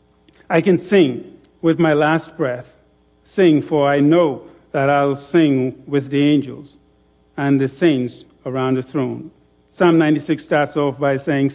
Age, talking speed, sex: 50-69, 150 wpm, male